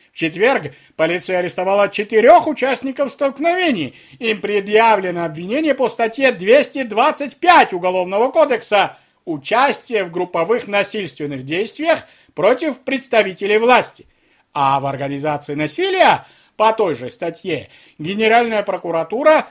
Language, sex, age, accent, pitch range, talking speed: Russian, male, 50-69, native, 180-290 Hz, 100 wpm